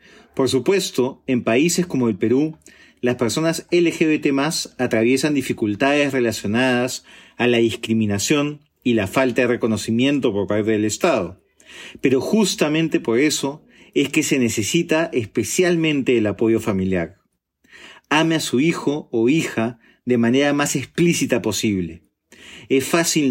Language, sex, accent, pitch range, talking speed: Spanish, male, Argentinian, 115-150 Hz, 130 wpm